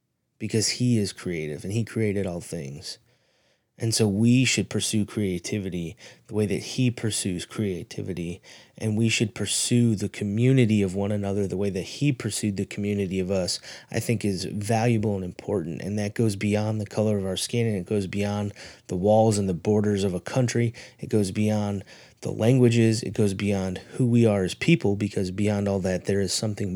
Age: 30-49